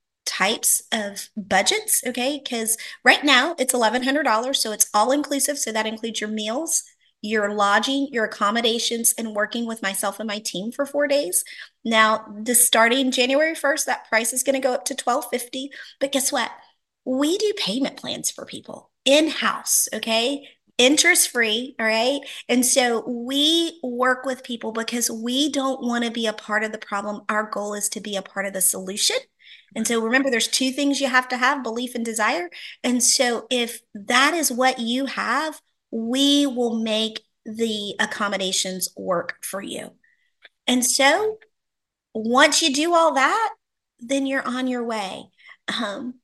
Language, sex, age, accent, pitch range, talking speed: English, female, 30-49, American, 220-275 Hz, 170 wpm